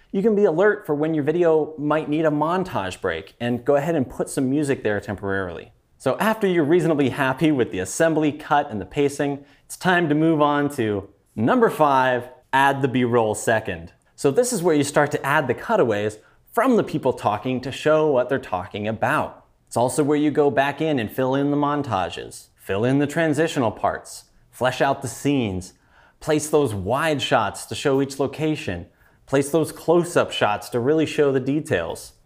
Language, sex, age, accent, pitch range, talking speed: English, male, 30-49, American, 120-155 Hz, 195 wpm